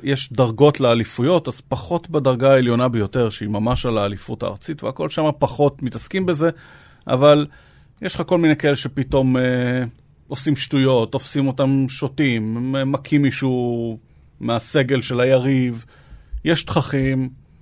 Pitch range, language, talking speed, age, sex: 125-150 Hz, Hebrew, 135 wpm, 30-49, male